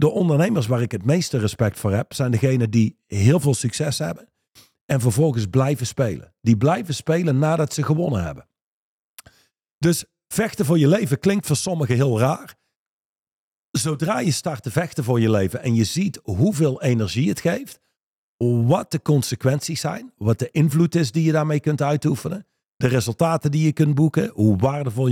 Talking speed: 175 wpm